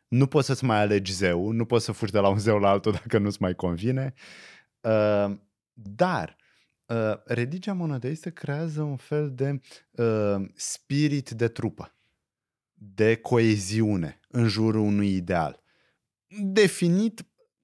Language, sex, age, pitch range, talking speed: Romanian, male, 30-49, 100-150 Hz, 125 wpm